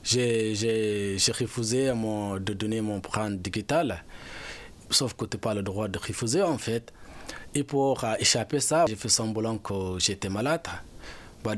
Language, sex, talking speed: French, male, 160 wpm